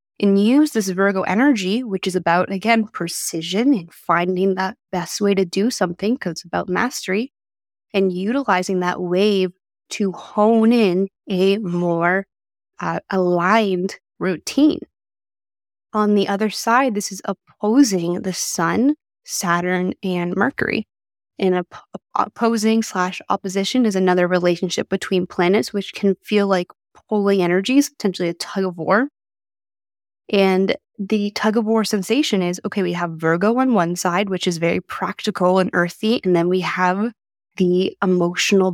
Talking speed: 145 wpm